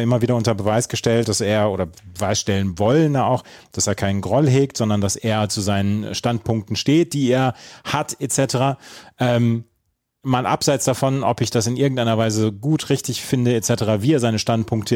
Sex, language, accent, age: male, German, German, 30-49